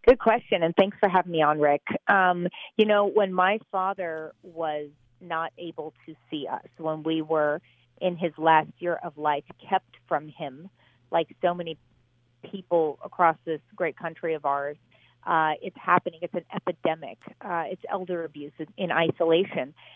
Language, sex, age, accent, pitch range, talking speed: English, female, 40-59, American, 160-195 Hz, 170 wpm